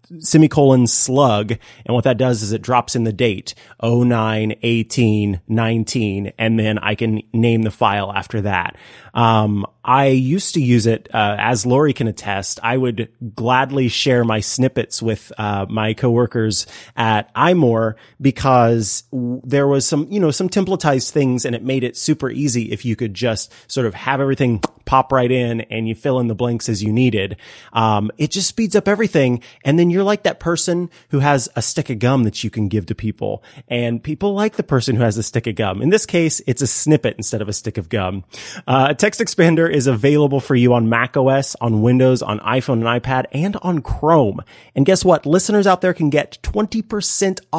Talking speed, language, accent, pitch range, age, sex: 200 wpm, English, American, 115-155 Hz, 30-49, male